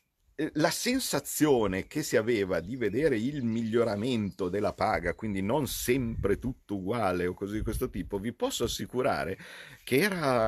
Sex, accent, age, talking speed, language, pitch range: male, native, 50-69, 145 wpm, Italian, 85-110 Hz